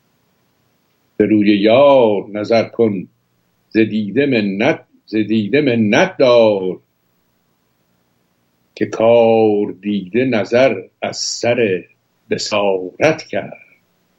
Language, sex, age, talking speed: Persian, male, 60-79, 70 wpm